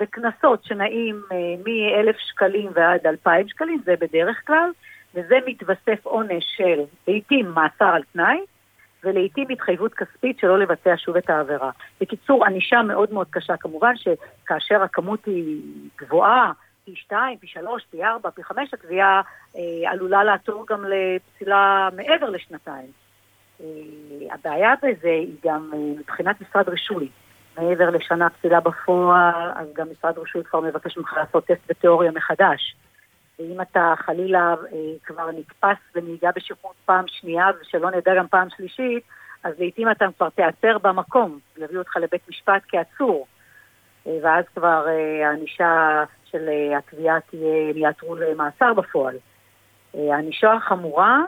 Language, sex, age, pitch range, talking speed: Hebrew, female, 50-69, 160-200 Hz, 130 wpm